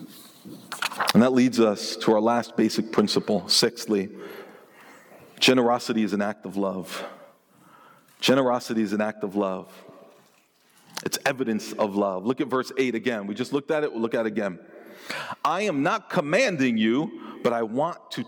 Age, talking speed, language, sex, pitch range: 40-59, 165 wpm, English, male, 105-140 Hz